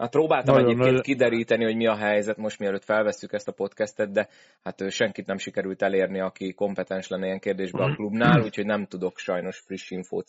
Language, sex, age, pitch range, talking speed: Hungarian, male, 20-39, 90-100 Hz, 185 wpm